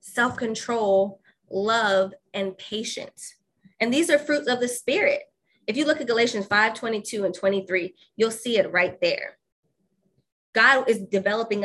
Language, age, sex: English, 20-39, female